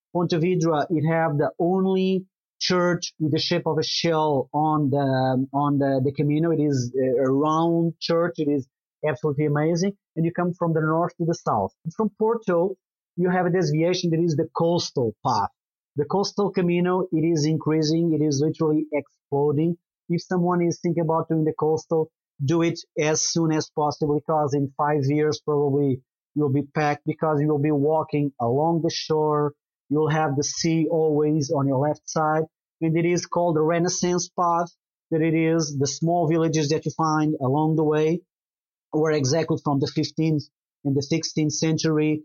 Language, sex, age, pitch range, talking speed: English, male, 30-49, 150-170 Hz, 175 wpm